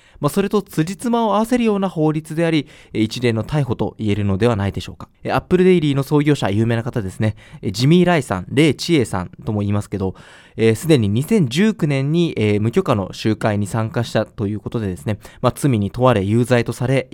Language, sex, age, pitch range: Japanese, male, 20-39, 110-160 Hz